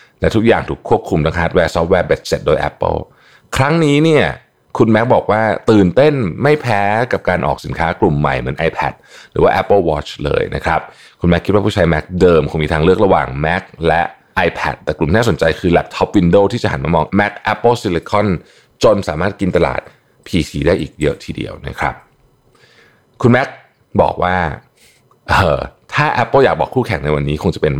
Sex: male